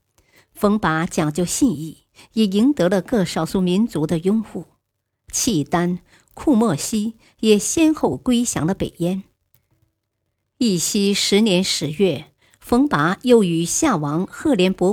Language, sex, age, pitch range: Chinese, male, 50-69, 165-230 Hz